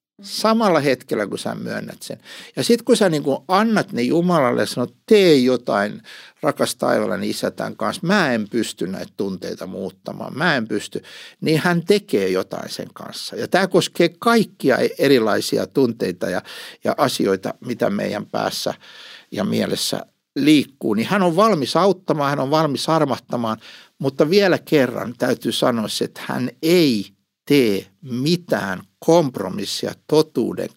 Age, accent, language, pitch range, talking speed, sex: 60-79, native, Finnish, 135-205 Hz, 145 wpm, male